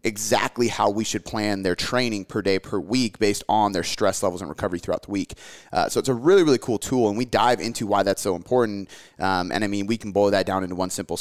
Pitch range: 100-120 Hz